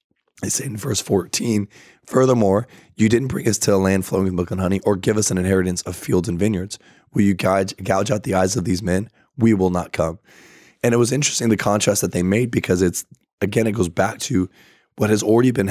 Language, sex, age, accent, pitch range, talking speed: English, male, 20-39, American, 90-110 Hz, 225 wpm